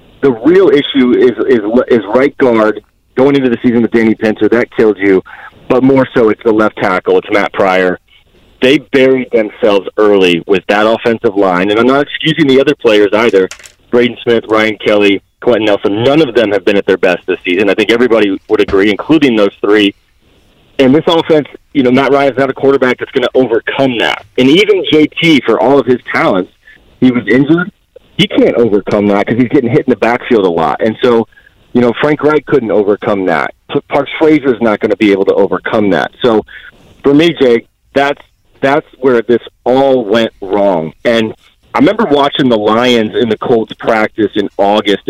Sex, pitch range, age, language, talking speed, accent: male, 105-140 Hz, 40-59, English, 200 wpm, American